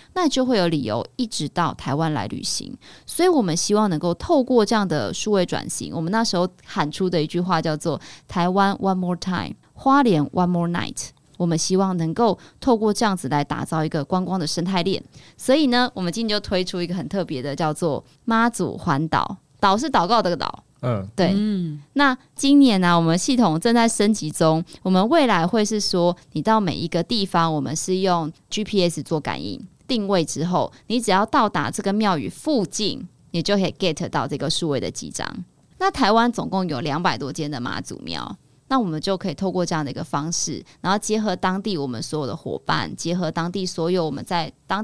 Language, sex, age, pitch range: Chinese, female, 20-39, 160-210 Hz